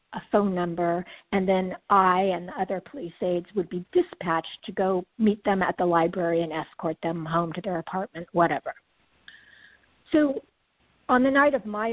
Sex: female